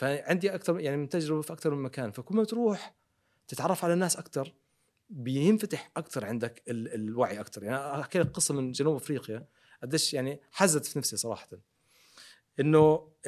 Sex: male